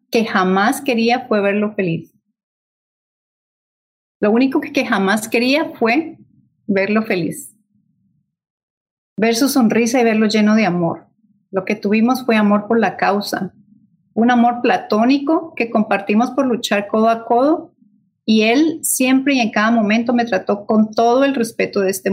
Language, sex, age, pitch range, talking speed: English, female, 30-49, 195-235 Hz, 150 wpm